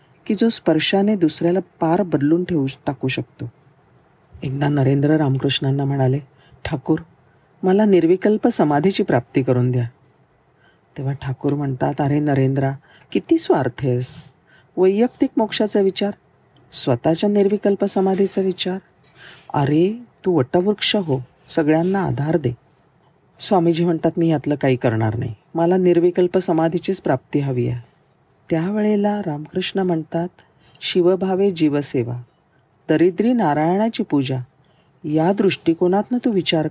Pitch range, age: 135-180 Hz, 40-59